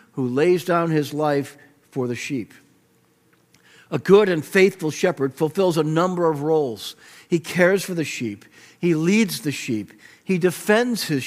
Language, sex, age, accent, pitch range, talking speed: English, male, 50-69, American, 135-180 Hz, 160 wpm